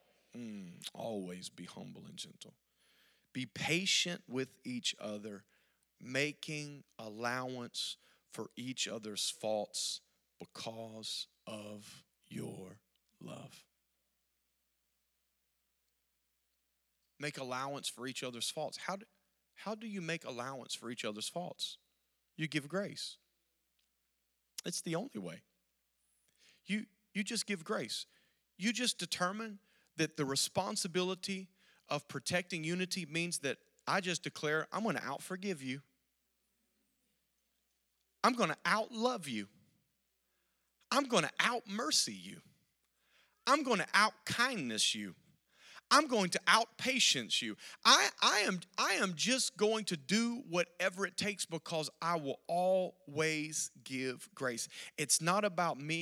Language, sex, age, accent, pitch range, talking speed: English, male, 40-59, American, 115-190 Hz, 120 wpm